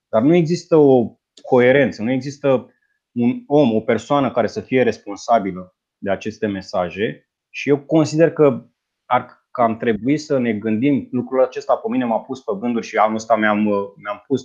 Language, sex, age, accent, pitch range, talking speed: Romanian, male, 20-39, native, 110-135 Hz, 180 wpm